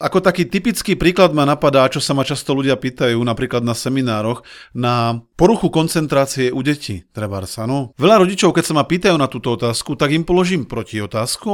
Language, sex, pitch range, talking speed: Slovak, male, 120-170 Hz, 190 wpm